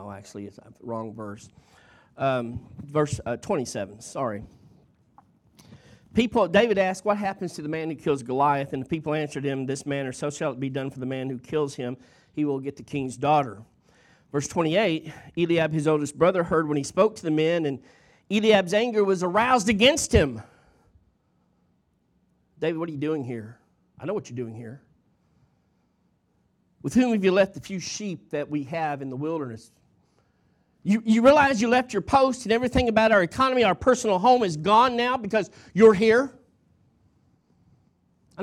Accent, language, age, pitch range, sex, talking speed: American, English, 40-59, 140-220 Hz, male, 175 wpm